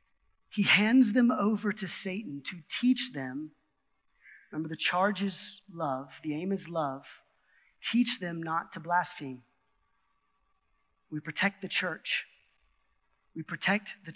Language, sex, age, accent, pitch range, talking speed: English, male, 30-49, American, 160-215 Hz, 125 wpm